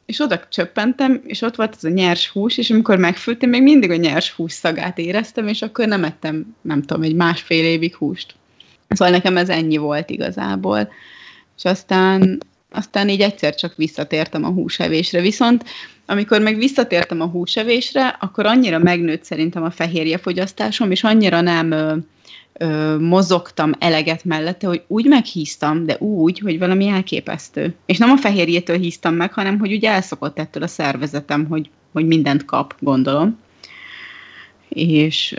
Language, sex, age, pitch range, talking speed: Hungarian, female, 30-49, 160-200 Hz, 155 wpm